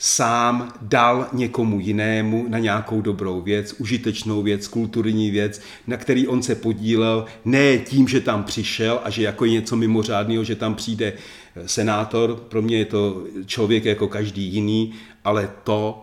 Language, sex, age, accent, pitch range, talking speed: Czech, male, 40-59, native, 105-120 Hz, 155 wpm